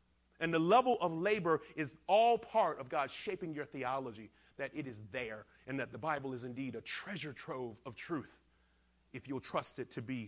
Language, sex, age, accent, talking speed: English, male, 40-59, American, 200 wpm